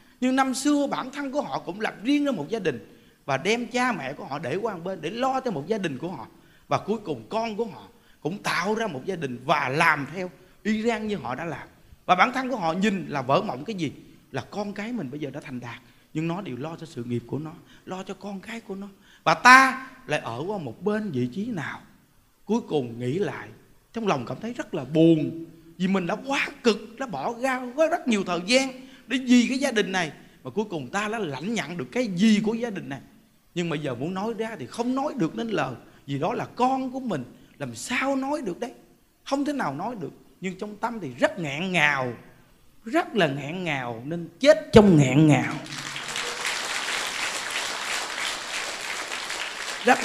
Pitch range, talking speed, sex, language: 155-250 Hz, 220 wpm, male, Vietnamese